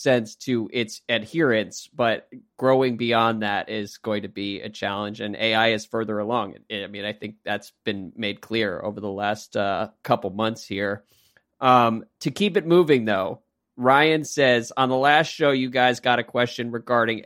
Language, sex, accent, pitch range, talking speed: English, male, American, 110-135 Hz, 180 wpm